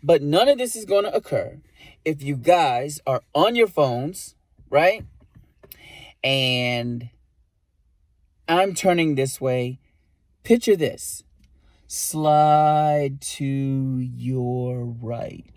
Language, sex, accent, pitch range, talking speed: English, male, American, 115-155 Hz, 105 wpm